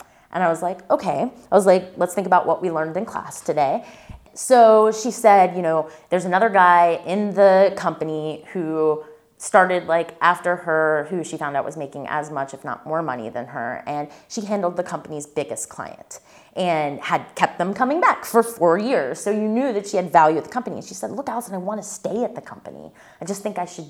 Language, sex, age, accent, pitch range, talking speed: English, female, 20-39, American, 150-205 Hz, 225 wpm